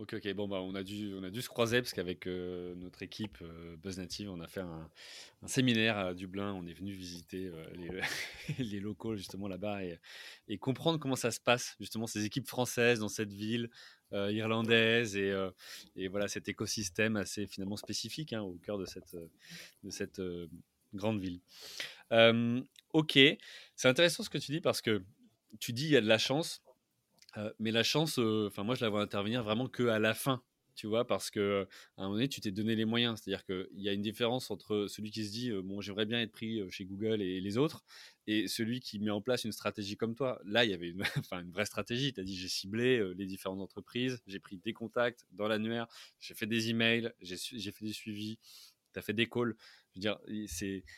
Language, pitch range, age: French, 95-115 Hz, 20-39